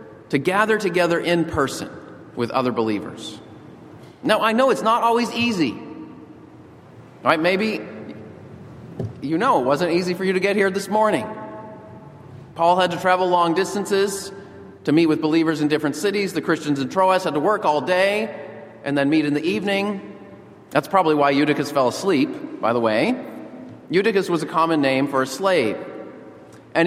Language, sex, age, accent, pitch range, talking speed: English, male, 40-59, American, 150-200 Hz, 165 wpm